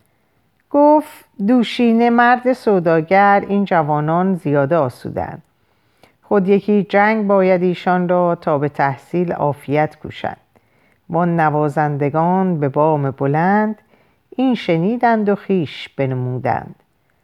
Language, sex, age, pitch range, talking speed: Persian, female, 50-69, 150-235 Hz, 100 wpm